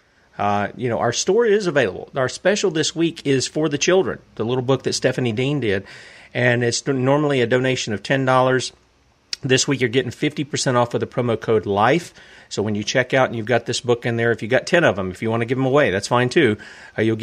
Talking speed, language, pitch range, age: 235 wpm, English, 115-135 Hz, 40-59